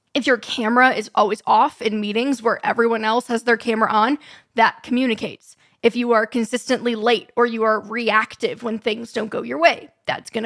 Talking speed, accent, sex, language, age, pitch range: 195 wpm, American, female, English, 10-29, 220-265 Hz